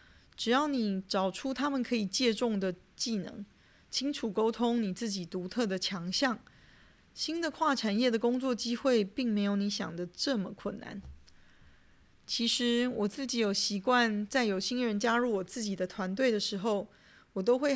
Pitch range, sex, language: 195-245 Hz, female, Chinese